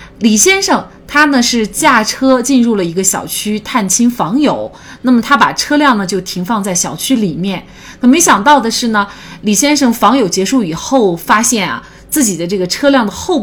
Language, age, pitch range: Chinese, 30-49, 190-260 Hz